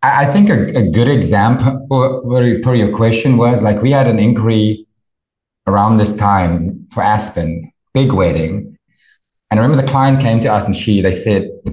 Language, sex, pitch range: English, male, 95-125 Hz